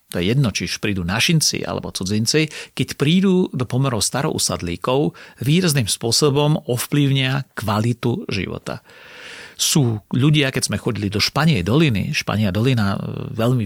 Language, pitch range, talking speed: Slovak, 115-150 Hz, 125 wpm